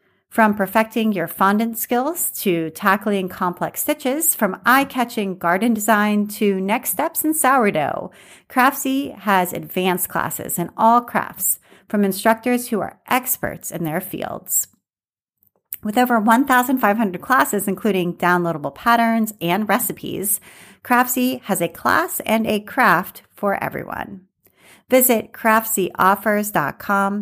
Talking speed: 115 wpm